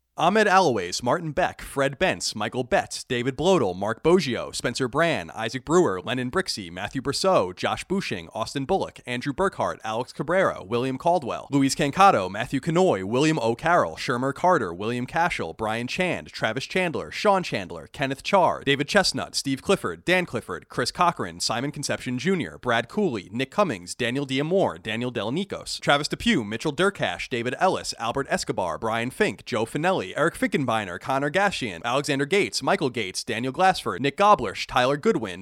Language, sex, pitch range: English, male, 120-180 Hz